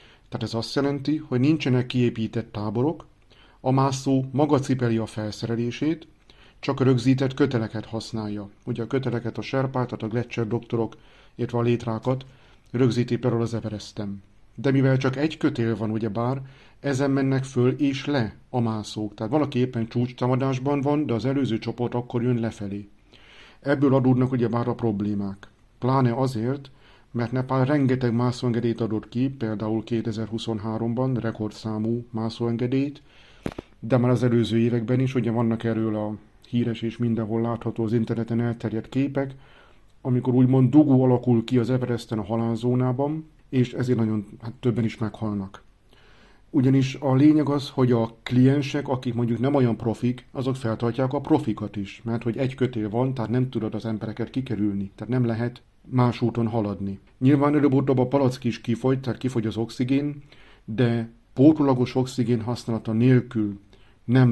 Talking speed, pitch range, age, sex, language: 150 wpm, 110-130 Hz, 50-69, male, Hungarian